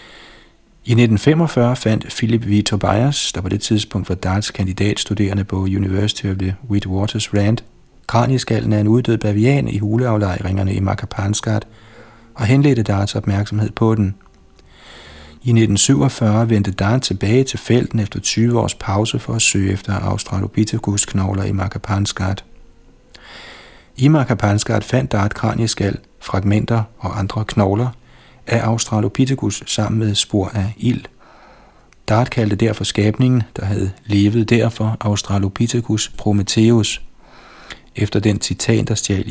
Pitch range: 100-115 Hz